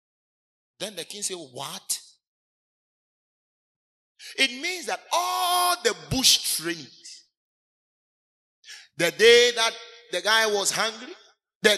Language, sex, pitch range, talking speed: English, male, 185-255 Hz, 100 wpm